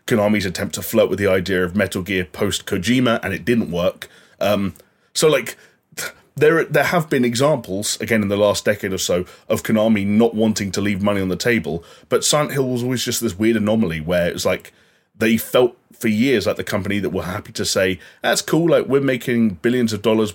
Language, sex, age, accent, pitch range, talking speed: English, male, 30-49, British, 95-115 Hz, 215 wpm